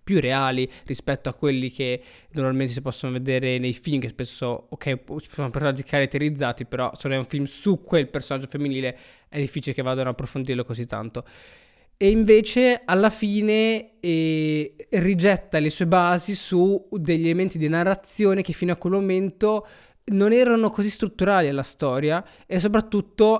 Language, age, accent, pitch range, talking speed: Italian, 20-39, native, 140-185 Hz, 160 wpm